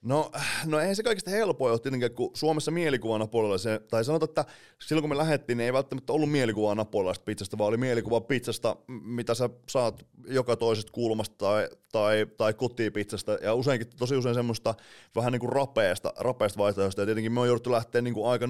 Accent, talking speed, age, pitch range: native, 180 wpm, 30-49, 105-135 Hz